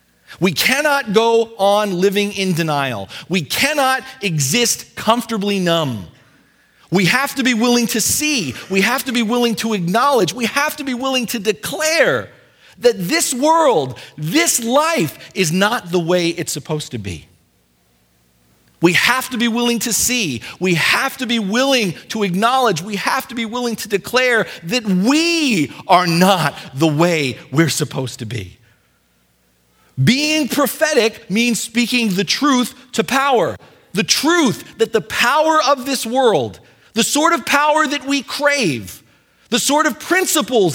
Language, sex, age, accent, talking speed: English, male, 40-59, American, 155 wpm